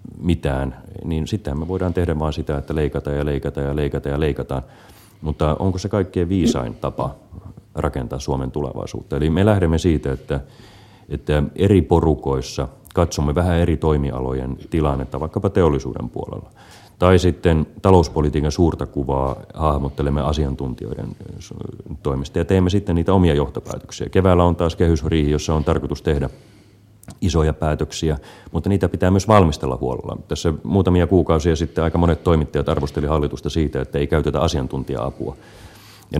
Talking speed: 145 wpm